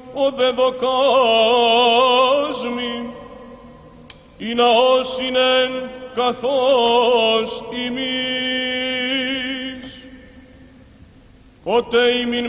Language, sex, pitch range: Greek, male, 240-255 Hz